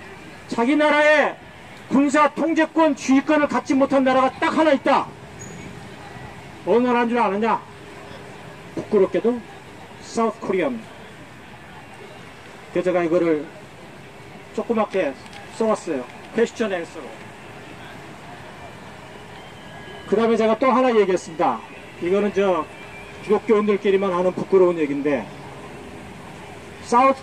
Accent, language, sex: native, Korean, male